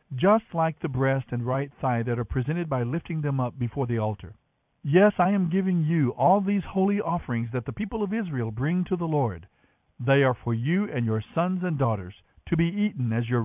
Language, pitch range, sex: English, 125-165 Hz, male